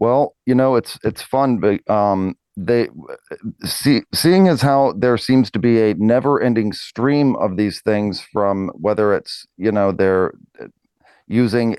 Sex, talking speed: male, 155 wpm